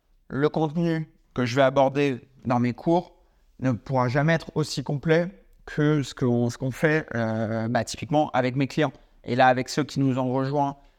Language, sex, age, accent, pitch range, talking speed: French, male, 30-49, French, 120-150 Hz, 190 wpm